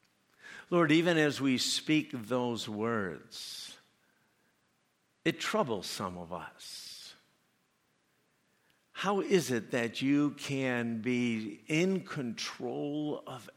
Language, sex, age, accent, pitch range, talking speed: English, male, 60-79, American, 115-165 Hz, 95 wpm